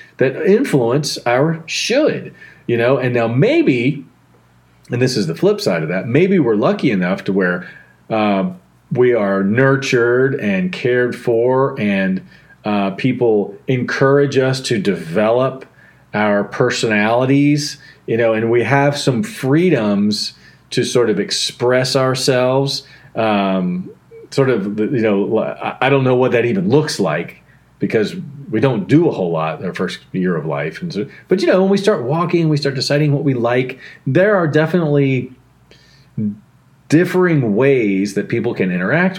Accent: American